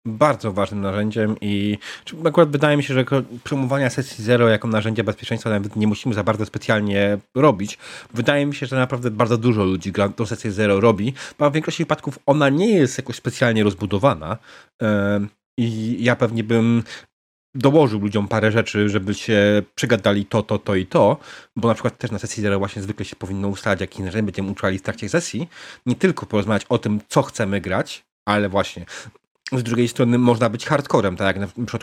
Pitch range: 105-140 Hz